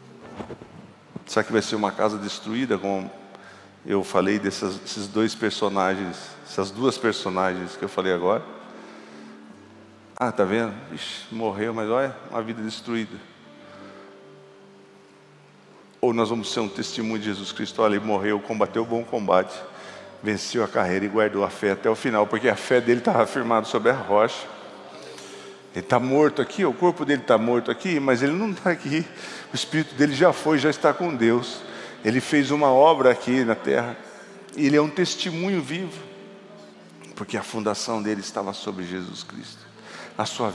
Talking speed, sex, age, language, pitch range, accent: 165 wpm, male, 50-69, Portuguese, 100-145 Hz, Brazilian